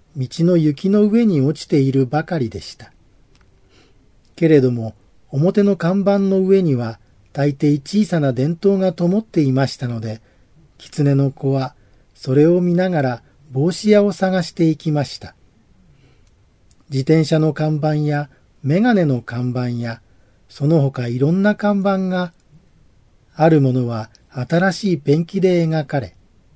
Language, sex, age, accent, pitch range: Japanese, male, 40-59, native, 125-175 Hz